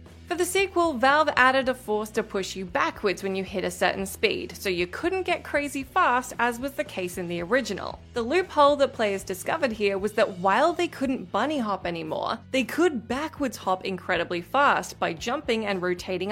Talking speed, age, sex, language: 200 wpm, 20-39, female, English